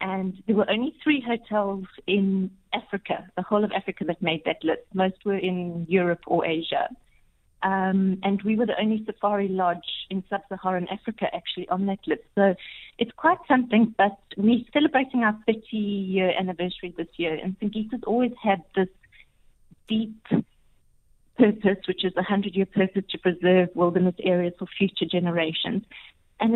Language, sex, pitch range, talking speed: English, female, 180-210 Hz, 155 wpm